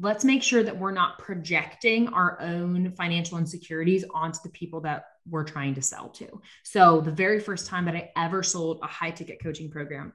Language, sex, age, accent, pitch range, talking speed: English, female, 20-39, American, 165-230 Hz, 200 wpm